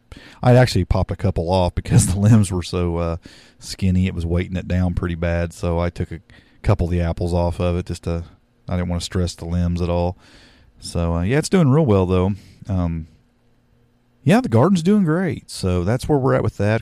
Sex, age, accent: male, 40-59, American